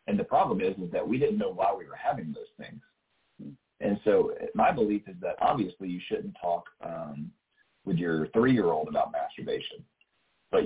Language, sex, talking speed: English, male, 180 wpm